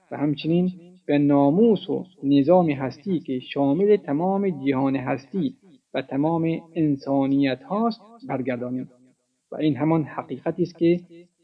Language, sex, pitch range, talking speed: Persian, male, 135-175 Hz, 120 wpm